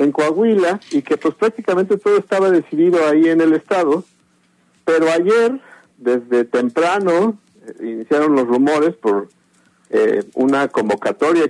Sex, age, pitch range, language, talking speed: male, 50-69, 125-185 Hz, Spanish, 130 wpm